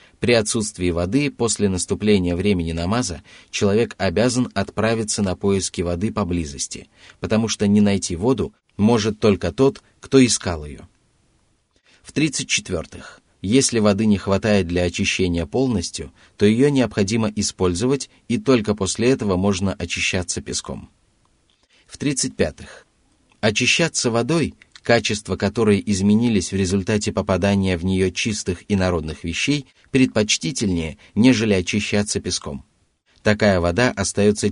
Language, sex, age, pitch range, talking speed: Russian, male, 30-49, 90-115 Hz, 120 wpm